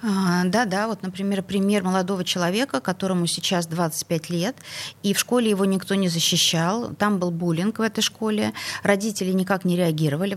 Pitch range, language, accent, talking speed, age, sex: 165-210 Hz, Russian, native, 160 wpm, 30-49, female